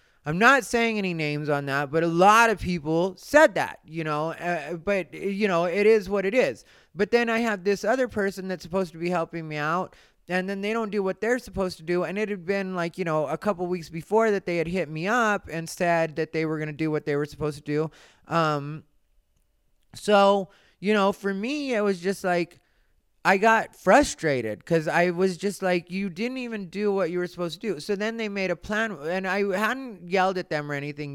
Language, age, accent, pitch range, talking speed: English, 30-49, American, 150-195 Hz, 235 wpm